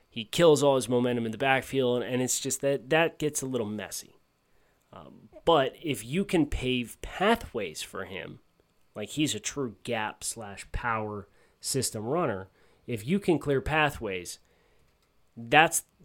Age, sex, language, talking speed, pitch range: 30-49, male, English, 155 wpm, 115-140 Hz